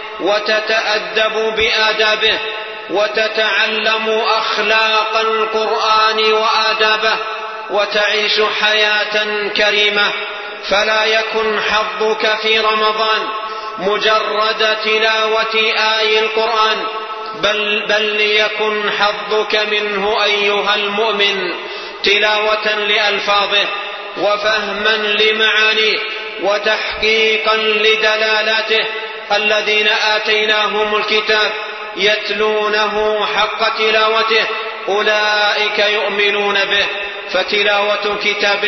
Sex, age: male, 40-59